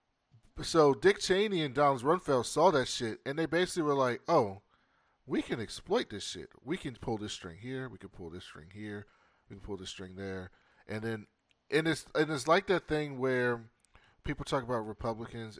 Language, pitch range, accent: English, 105-130 Hz, American